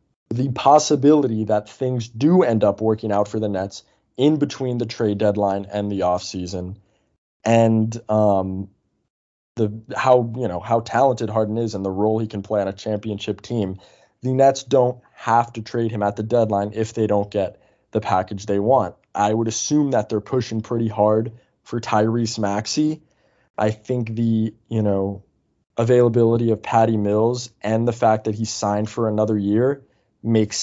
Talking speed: 170 wpm